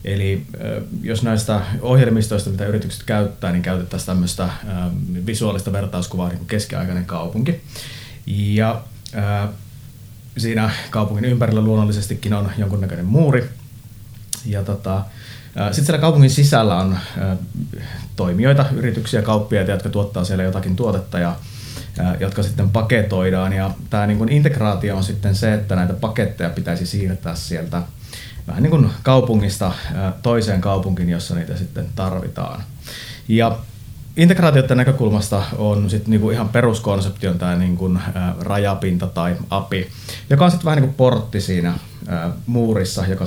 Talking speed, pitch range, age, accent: 120 wpm, 95-115 Hz, 30-49, native